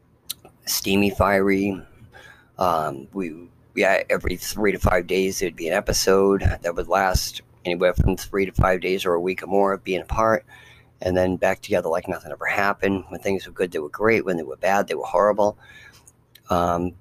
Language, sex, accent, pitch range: English, male, American, 90-105 Hz